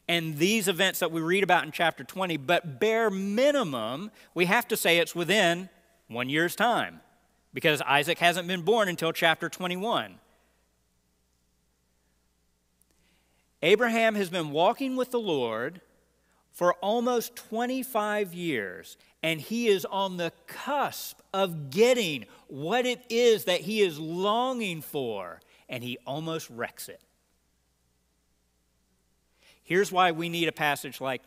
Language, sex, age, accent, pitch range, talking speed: English, male, 40-59, American, 120-195 Hz, 130 wpm